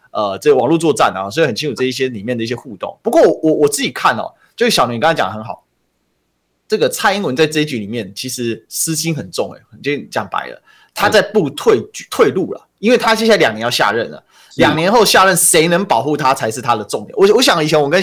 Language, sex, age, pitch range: Chinese, male, 20-39, 140-225 Hz